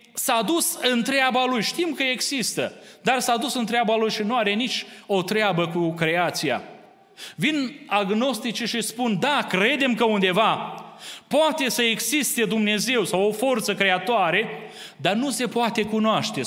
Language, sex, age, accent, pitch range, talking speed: Romanian, male, 30-49, native, 210-260 Hz, 155 wpm